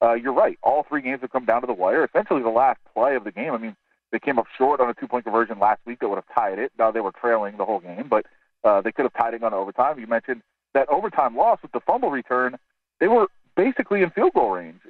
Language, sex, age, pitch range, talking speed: English, male, 40-59, 115-140 Hz, 280 wpm